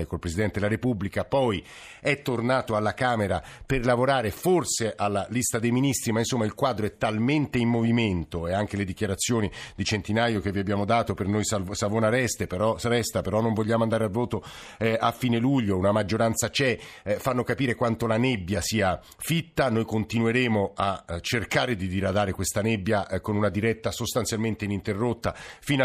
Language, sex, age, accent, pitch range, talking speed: Italian, male, 50-69, native, 105-125 Hz, 165 wpm